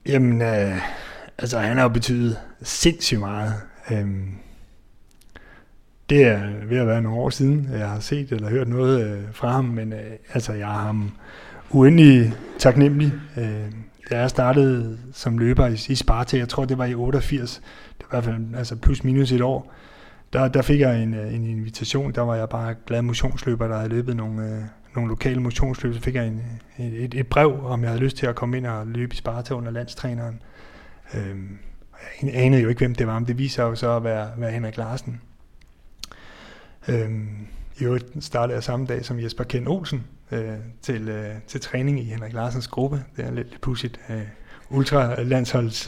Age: 30-49